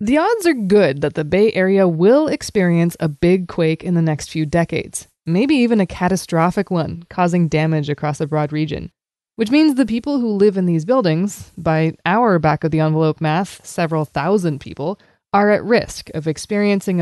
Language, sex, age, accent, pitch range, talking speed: English, female, 20-39, American, 160-210 Hz, 185 wpm